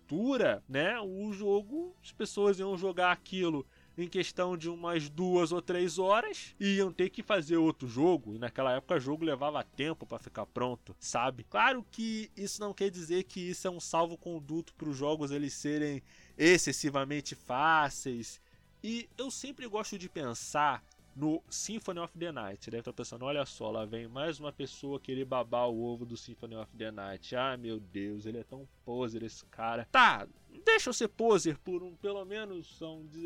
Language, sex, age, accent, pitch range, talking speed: Portuguese, male, 20-39, Brazilian, 125-180 Hz, 190 wpm